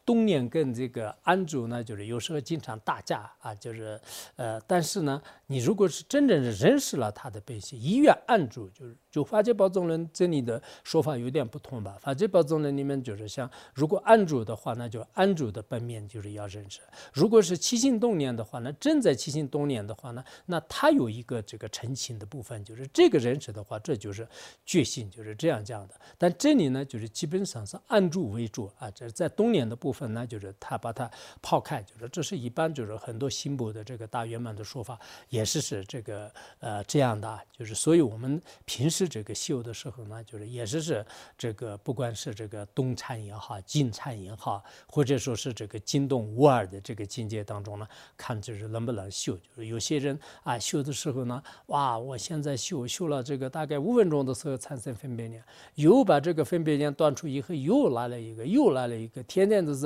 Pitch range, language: 115-155 Hz, English